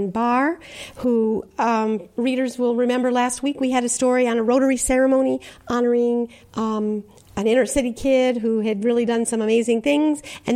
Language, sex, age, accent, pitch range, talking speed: English, female, 50-69, American, 230-275 Hz, 170 wpm